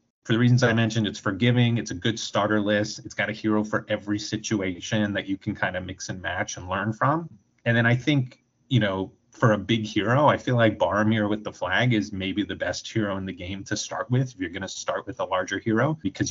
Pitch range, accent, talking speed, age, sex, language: 100-115 Hz, American, 250 wpm, 30-49, male, English